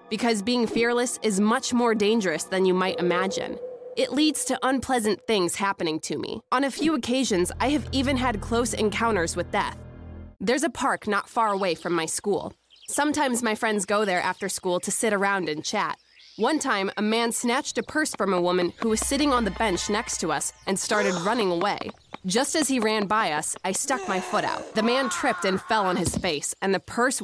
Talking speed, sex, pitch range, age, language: 215 wpm, female, 190-250 Hz, 20-39, English